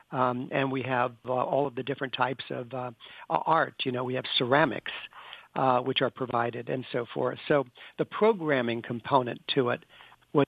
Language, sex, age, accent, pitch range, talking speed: English, male, 60-79, American, 125-145 Hz, 185 wpm